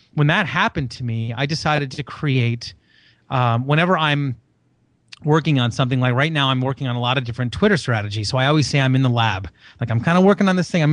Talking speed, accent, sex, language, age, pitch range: 240 wpm, American, male, English, 30-49, 120-150 Hz